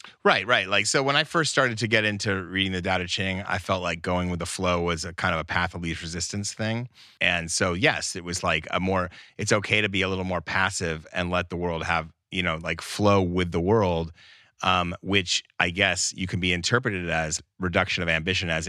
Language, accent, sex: Japanese, American, male